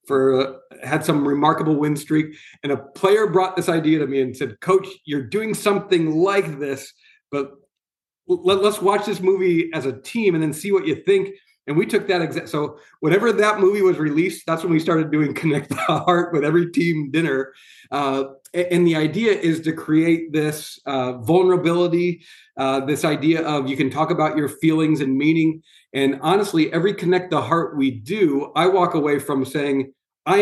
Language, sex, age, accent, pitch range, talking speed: English, male, 40-59, American, 140-175 Hz, 185 wpm